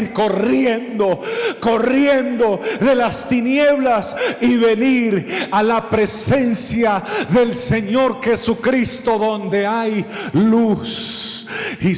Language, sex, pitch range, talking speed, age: Spanish, male, 175-220 Hz, 85 wpm, 50-69